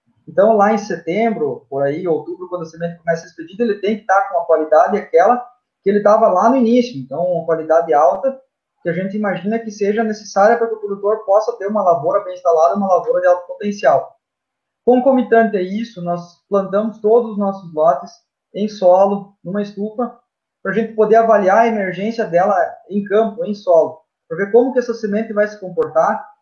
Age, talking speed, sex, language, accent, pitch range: 20-39, 200 wpm, male, Portuguese, Brazilian, 170-220 Hz